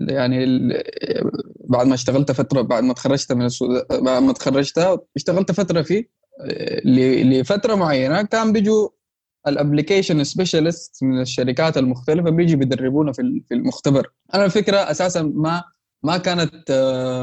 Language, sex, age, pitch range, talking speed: Arabic, male, 20-39, 130-185 Hz, 120 wpm